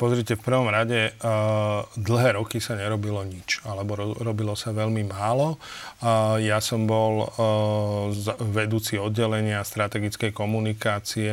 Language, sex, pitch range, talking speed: Slovak, male, 105-115 Hz, 110 wpm